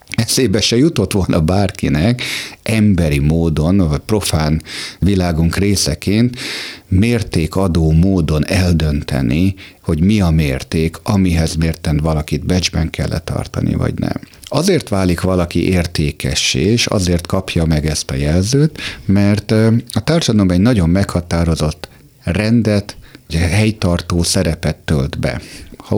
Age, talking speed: 50-69, 115 wpm